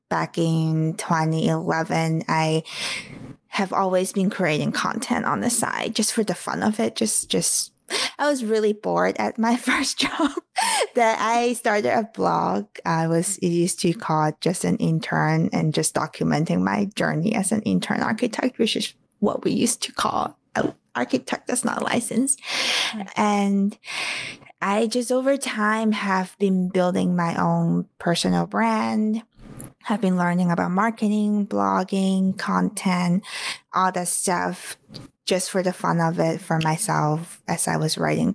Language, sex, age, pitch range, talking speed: English, female, 20-39, 165-220 Hz, 155 wpm